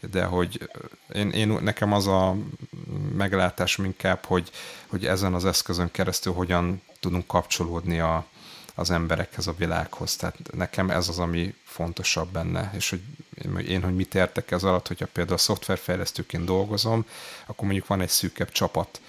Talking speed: 155 wpm